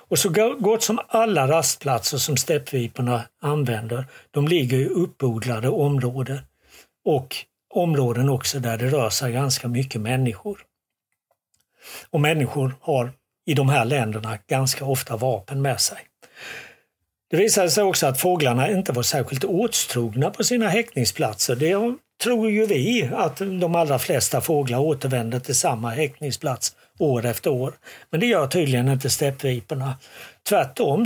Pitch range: 130-165 Hz